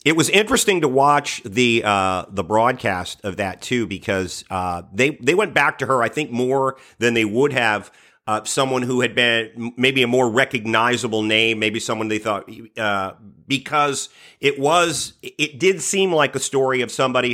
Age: 40-59